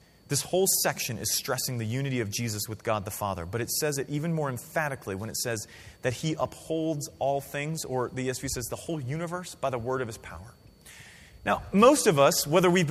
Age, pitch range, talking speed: 30-49, 125-180 Hz, 220 wpm